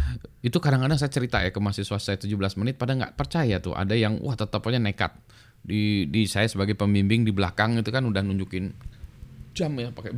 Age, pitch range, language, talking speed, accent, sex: 20-39, 100-130 Hz, Indonesian, 195 wpm, native, male